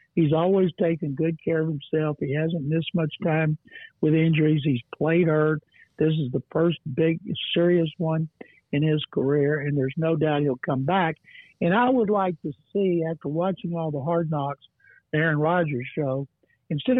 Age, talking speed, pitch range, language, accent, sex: 60-79, 180 wpm, 150-180 Hz, English, American, male